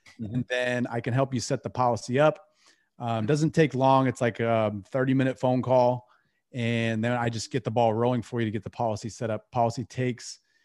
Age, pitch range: 30-49, 120-150 Hz